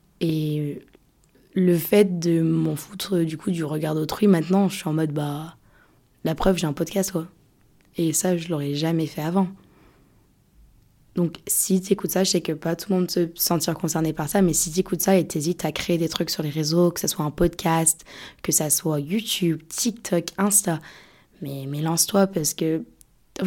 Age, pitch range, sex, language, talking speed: 20-39, 165-190 Hz, female, French, 195 wpm